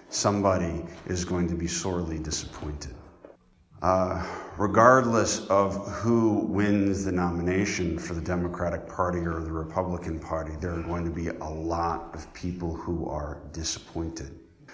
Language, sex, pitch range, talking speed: English, male, 80-100 Hz, 140 wpm